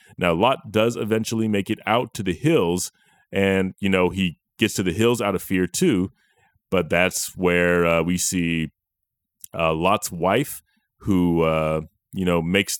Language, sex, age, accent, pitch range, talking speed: English, male, 30-49, American, 90-110 Hz, 170 wpm